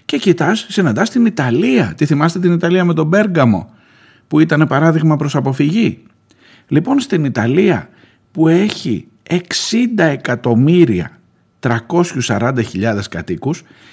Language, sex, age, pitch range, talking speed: Greek, male, 50-69, 110-180 Hz, 110 wpm